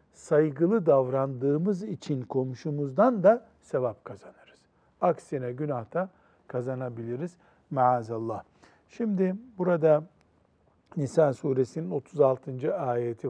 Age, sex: 60-79, male